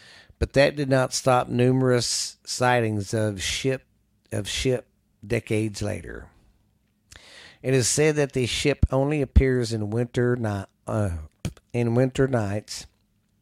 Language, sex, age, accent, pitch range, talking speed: English, male, 50-69, American, 105-125 Hz, 125 wpm